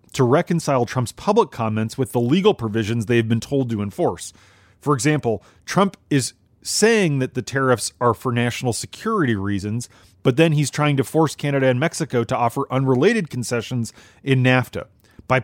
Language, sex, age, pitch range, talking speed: English, male, 30-49, 110-140 Hz, 170 wpm